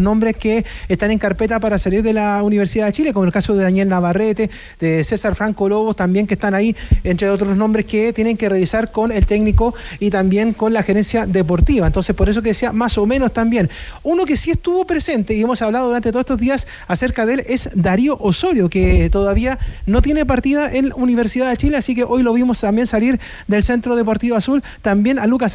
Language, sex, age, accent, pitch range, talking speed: Spanish, male, 30-49, Argentinian, 205-245 Hz, 215 wpm